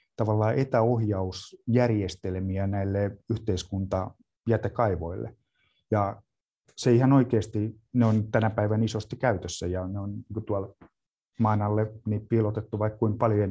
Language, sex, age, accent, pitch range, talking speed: Finnish, male, 30-49, native, 95-115 Hz, 100 wpm